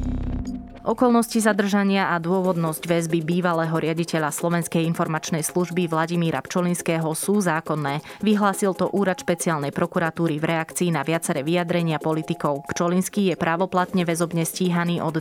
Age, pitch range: 20-39, 160-185 Hz